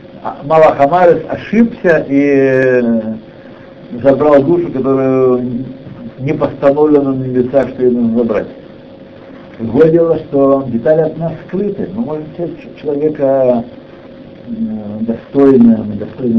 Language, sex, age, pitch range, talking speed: Russian, male, 60-79, 125-185 Hz, 90 wpm